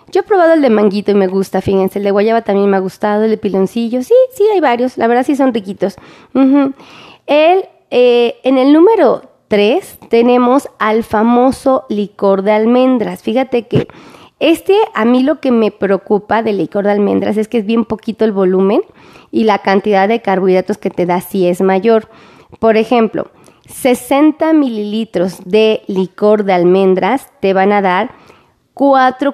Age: 30-49